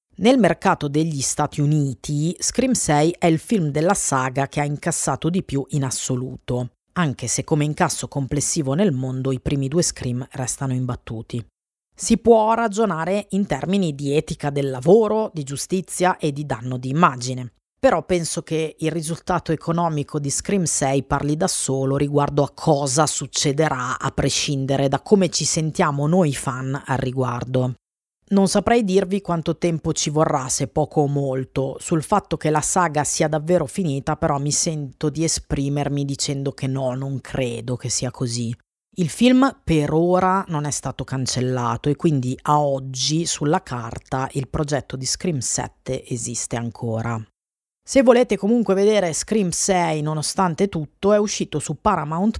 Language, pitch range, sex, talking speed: Italian, 135-175 Hz, female, 160 wpm